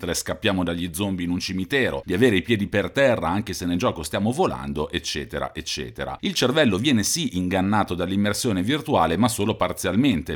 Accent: native